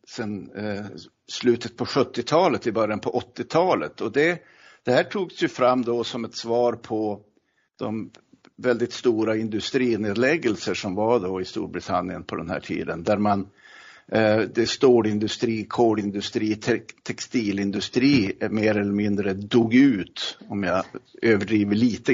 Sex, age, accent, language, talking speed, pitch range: male, 60-79, Swedish, English, 135 wpm, 105-130 Hz